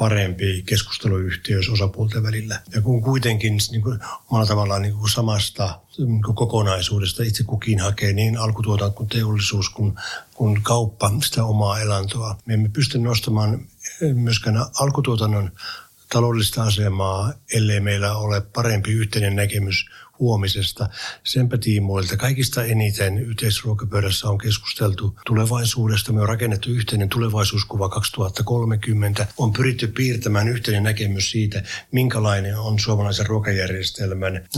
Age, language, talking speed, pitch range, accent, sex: 60-79, Finnish, 115 wpm, 100-115 Hz, native, male